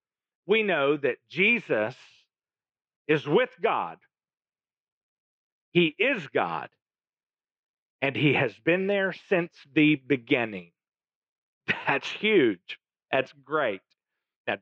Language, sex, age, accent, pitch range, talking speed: English, male, 40-59, American, 165-255 Hz, 95 wpm